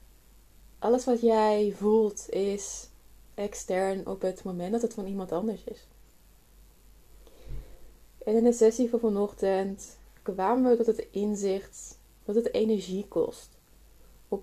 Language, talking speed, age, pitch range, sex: Dutch, 130 wpm, 20-39, 190-225 Hz, female